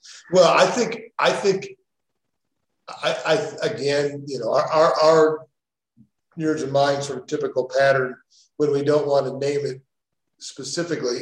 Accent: American